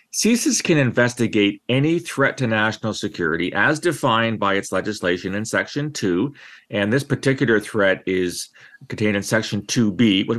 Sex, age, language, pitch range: male, 40-59, English, 105-140 Hz